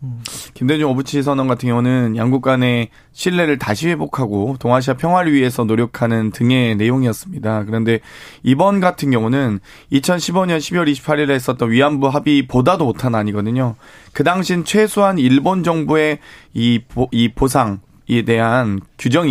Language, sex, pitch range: Korean, male, 120-155 Hz